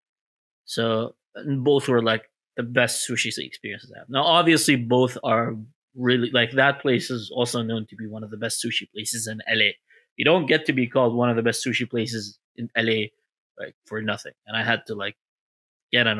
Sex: male